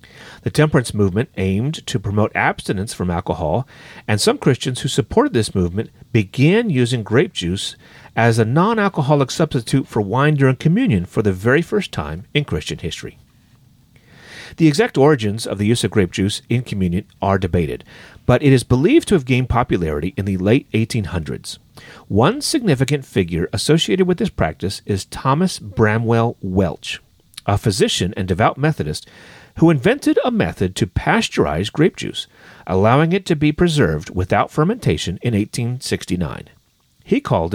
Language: English